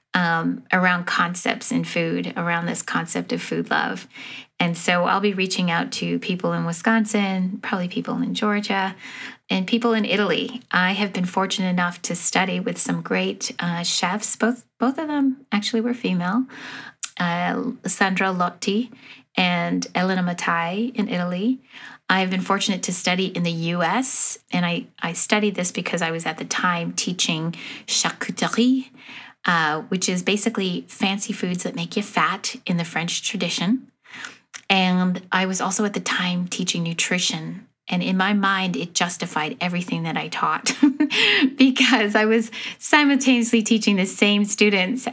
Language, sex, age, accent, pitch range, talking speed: English, female, 30-49, American, 175-230 Hz, 160 wpm